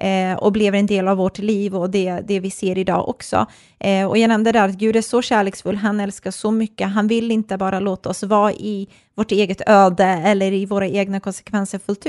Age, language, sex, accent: 20-39, Swedish, female, native